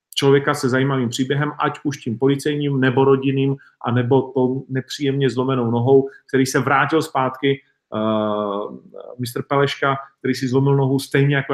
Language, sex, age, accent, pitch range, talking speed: Czech, male, 40-59, native, 125-145 Hz, 140 wpm